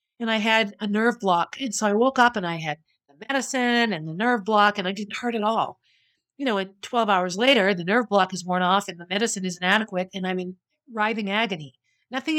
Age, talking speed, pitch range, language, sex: 50-69, 235 wpm, 190-235 Hz, English, female